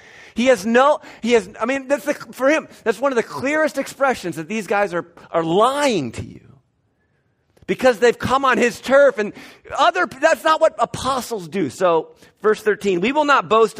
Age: 40-59